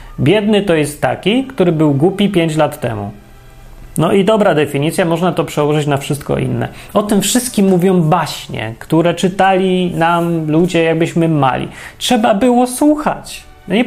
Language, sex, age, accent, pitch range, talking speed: Polish, male, 30-49, native, 140-180 Hz, 150 wpm